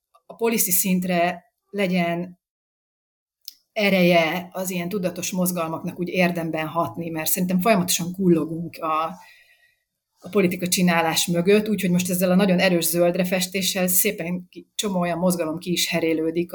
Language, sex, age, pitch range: Hungarian, female, 30-49, 165-185 Hz